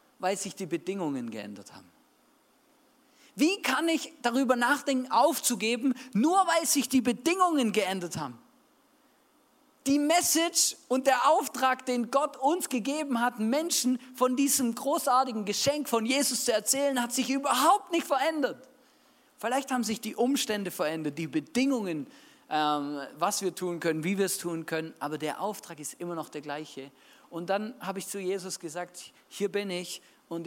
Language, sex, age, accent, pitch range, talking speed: German, male, 40-59, German, 165-265 Hz, 155 wpm